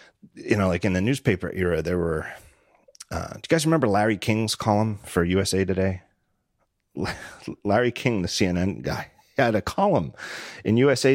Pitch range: 85-115 Hz